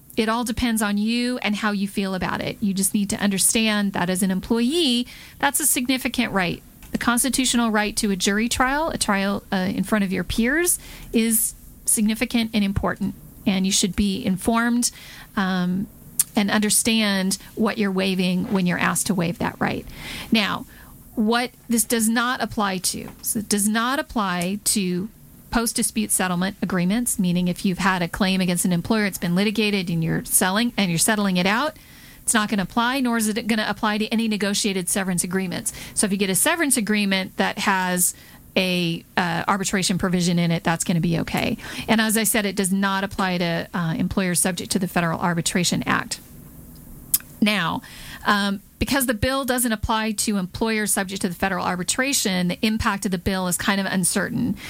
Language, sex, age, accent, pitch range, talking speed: English, female, 40-59, American, 190-225 Hz, 190 wpm